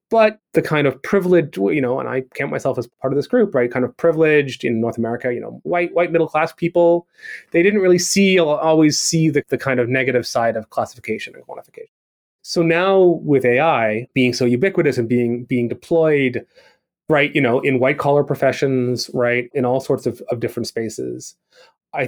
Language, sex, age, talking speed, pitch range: English, male, 30-49, 195 wpm, 120-160 Hz